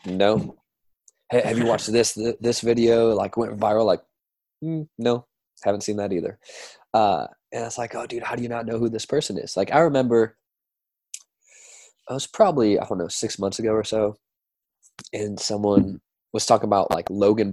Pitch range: 100-145 Hz